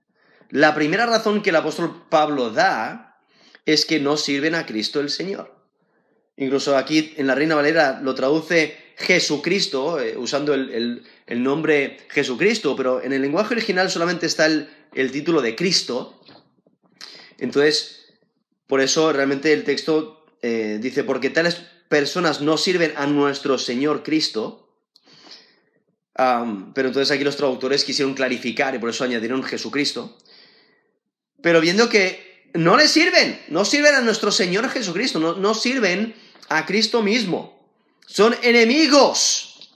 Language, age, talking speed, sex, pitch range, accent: Spanish, 30-49, 140 wpm, male, 140-200 Hz, Spanish